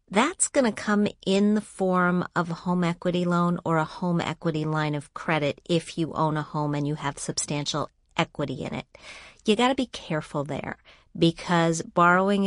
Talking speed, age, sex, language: 190 wpm, 40-59, female, English